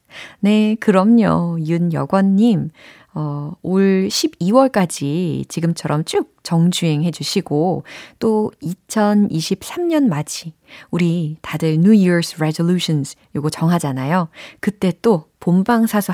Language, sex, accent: Korean, female, native